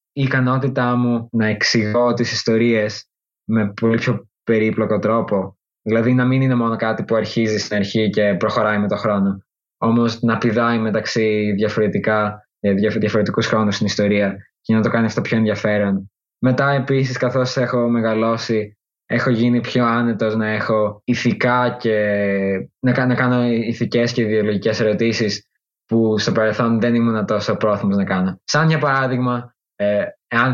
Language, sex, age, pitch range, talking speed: Greek, male, 20-39, 105-125 Hz, 145 wpm